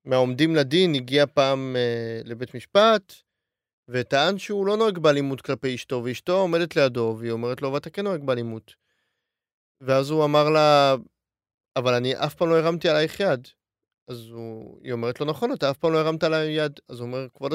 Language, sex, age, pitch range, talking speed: Hebrew, male, 30-49, 130-155 Hz, 190 wpm